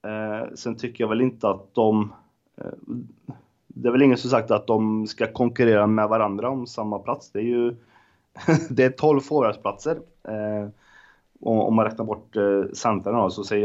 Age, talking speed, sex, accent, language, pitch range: 20-39, 175 wpm, male, native, Swedish, 95-115 Hz